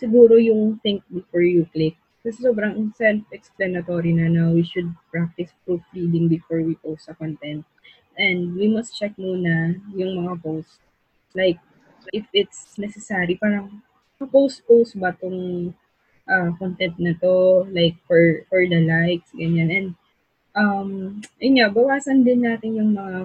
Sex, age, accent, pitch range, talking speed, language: female, 20-39, Filipino, 165-205 Hz, 145 wpm, English